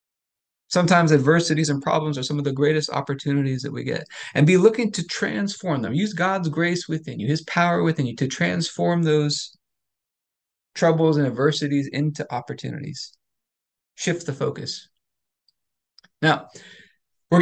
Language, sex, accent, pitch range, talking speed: English, male, American, 140-175 Hz, 140 wpm